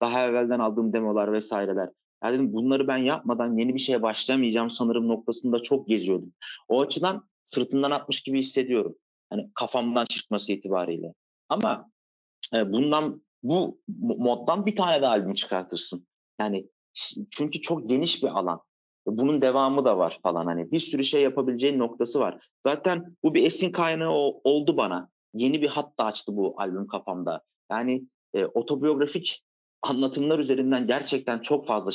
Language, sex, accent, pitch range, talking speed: Turkish, male, native, 115-150 Hz, 145 wpm